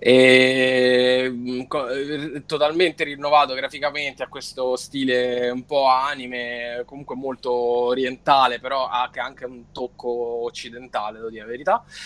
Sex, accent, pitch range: male, native, 115-130 Hz